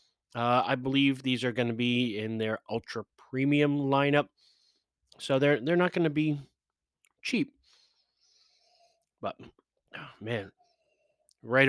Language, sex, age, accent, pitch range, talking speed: English, male, 30-49, American, 110-145 Hz, 130 wpm